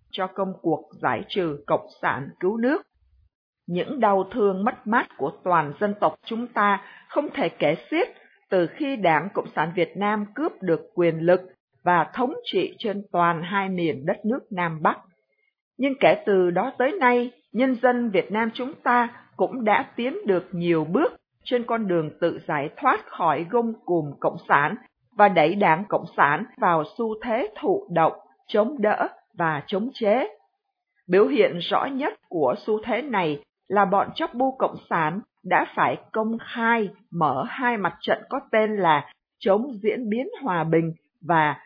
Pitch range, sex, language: 180-245 Hz, female, Vietnamese